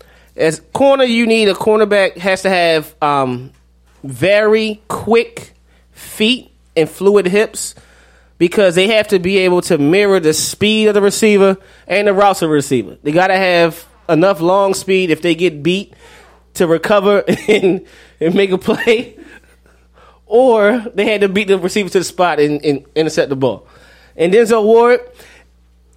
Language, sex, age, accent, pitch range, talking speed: English, male, 20-39, American, 155-215 Hz, 165 wpm